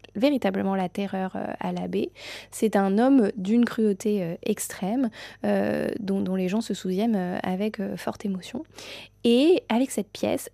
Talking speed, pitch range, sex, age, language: 140 wpm, 190-235 Hz, female, 20-39, French